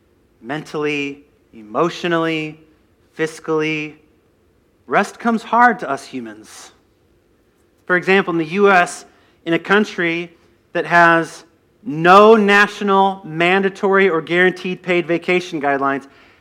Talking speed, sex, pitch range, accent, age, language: 100 wpm, male, 145-195 Hz, American, 40-59, English